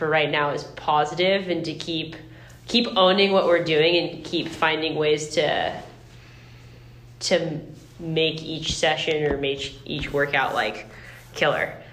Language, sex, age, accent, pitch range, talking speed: English, female, 10-29, American, 145-170 Hz, 135 wpm